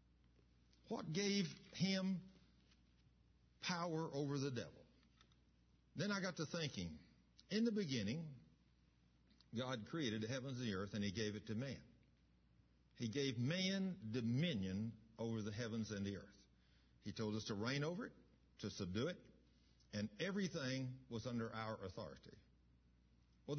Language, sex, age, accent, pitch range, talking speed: English, male, 60-79, American, 85-140 Hz, 140 wpm